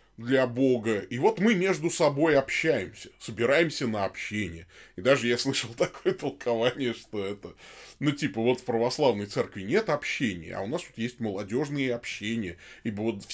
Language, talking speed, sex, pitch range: Russian, 170 wpm, male, 105-140 Hz